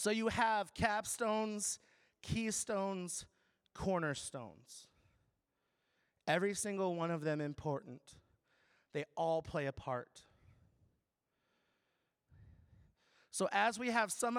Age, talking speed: 30-49, 90 wpm